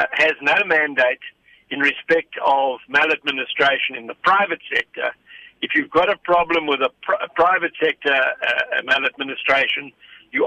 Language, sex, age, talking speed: English, male, 60-79, 150 wpm